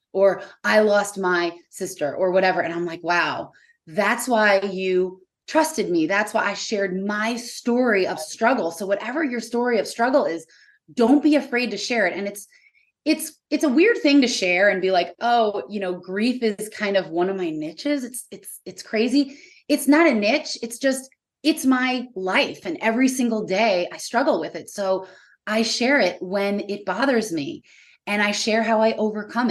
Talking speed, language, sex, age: 195 wpm, English, female, 20-39